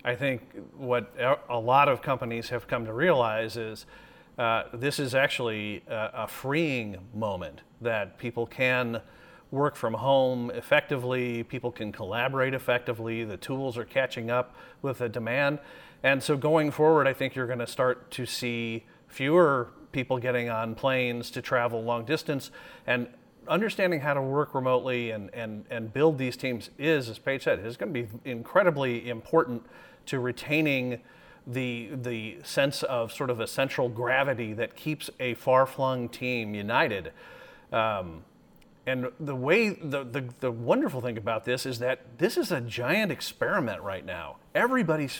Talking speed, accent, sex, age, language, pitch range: 160 wpm, American, male, 40-59, English, 120-145 Hz